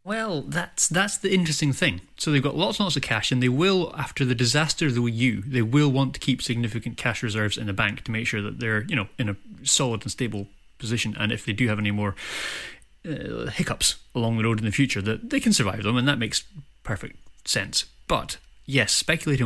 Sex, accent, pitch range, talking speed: male, British, 115-145 Hz, 230 wpm